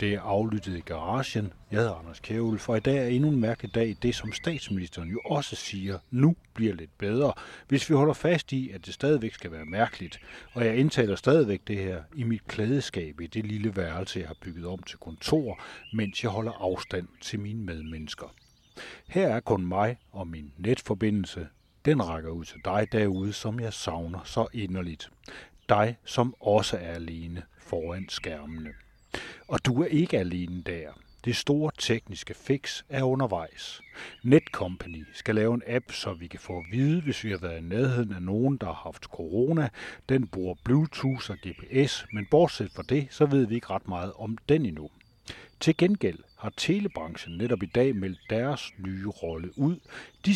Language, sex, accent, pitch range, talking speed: Danish, male, native, 90-125 Hz, 185 wpm